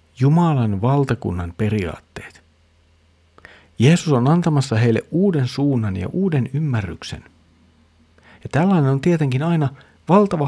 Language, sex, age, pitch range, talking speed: Finnish, male, 50-69, 90-135 Hz, 105 wpm